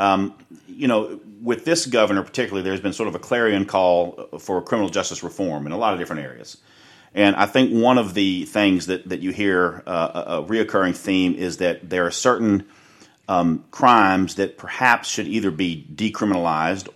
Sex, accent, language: male, American, English